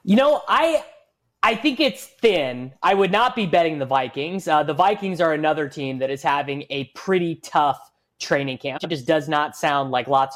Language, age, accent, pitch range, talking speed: English, 20-39, American, 135-160 Hz, 205 wpm